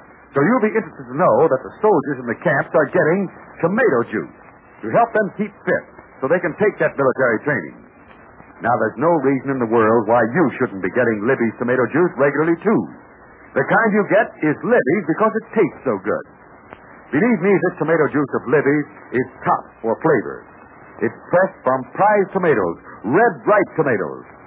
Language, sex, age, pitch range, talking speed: English, male, 60-79, 140-200 Hz, 180 wpm